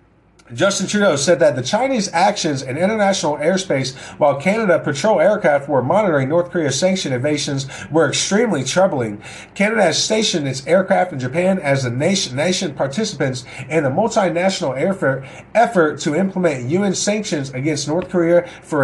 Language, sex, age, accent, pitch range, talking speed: English, male, 30-49, American, 150-205 Hz, 155 wpm